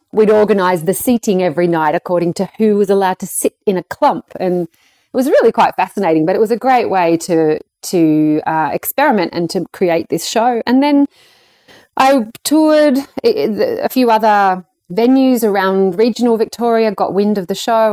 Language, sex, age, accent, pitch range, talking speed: English, female, 30-49, Australian, 185-255 Hz, 175 wpm